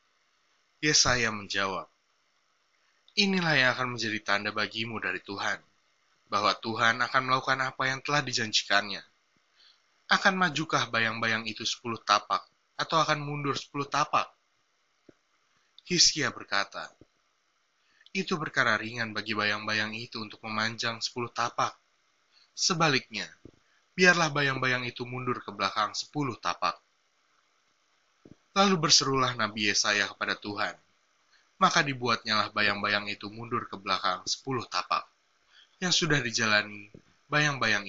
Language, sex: Indonesian, male